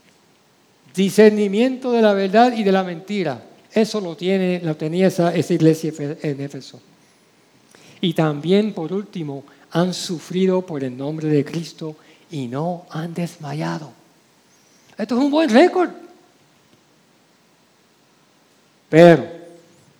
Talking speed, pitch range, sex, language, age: 115 wpm, 155-210 Hz, male, Spanish, 50-69